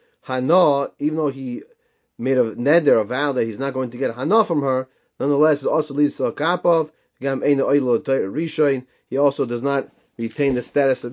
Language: English